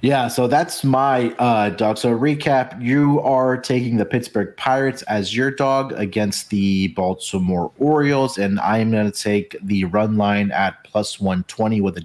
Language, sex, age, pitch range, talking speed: English, male, 30-49, 105-130 Hz, 170 wpm